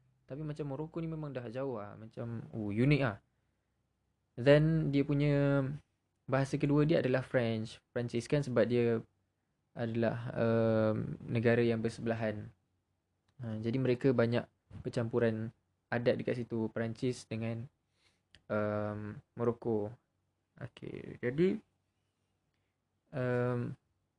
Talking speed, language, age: 110 wpm, Malay, 20-39